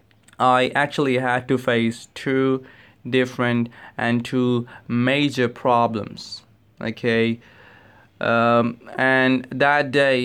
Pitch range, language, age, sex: 125-150 Hz, English, 20-39, male